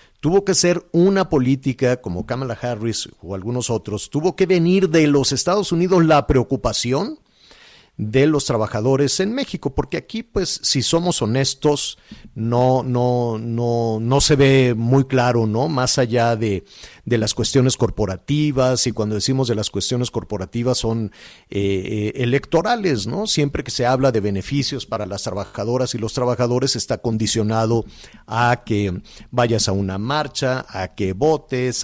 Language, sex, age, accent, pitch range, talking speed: Spanish, male, 50-69, Mexican, 110-135 Hz, 155 wpm